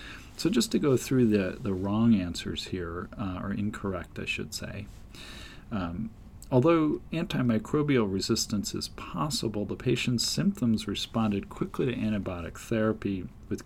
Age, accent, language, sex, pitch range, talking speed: 40-59, American, English, male, 90-115 Hz, 135 wpm